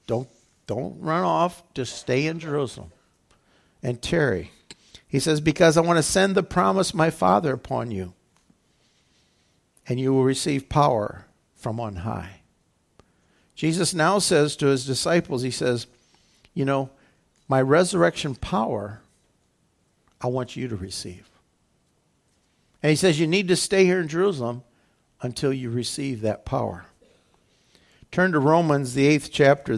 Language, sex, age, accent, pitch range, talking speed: English, male, 60-79, American, 115-160 Hz, 140 wpm